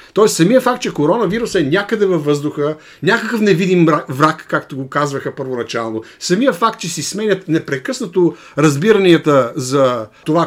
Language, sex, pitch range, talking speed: Bulgarian, male, 155-210 Hz, 145 wpm